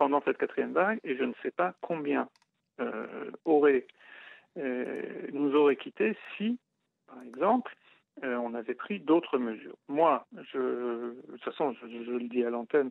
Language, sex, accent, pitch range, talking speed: French, male, French, 125-205 Hz, 165 wpm